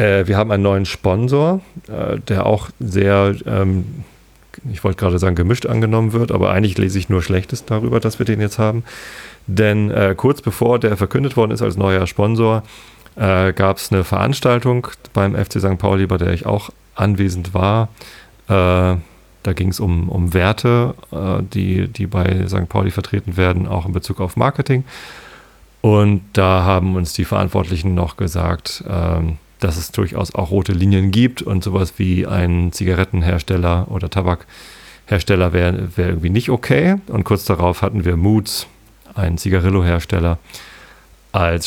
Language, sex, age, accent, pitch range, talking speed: German, male, 40-59, German, 90-105 Hz, 150 wpm